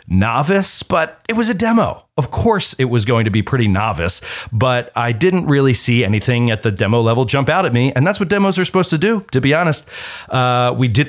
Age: 30-49